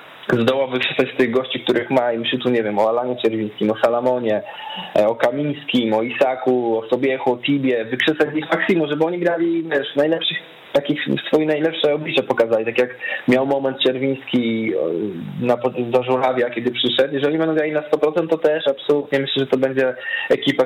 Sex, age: male, 20-39